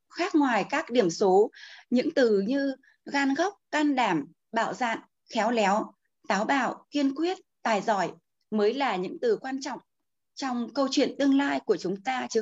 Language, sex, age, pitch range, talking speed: Vietnamese, female, 20-39, 215-300 Hz, 180 wpm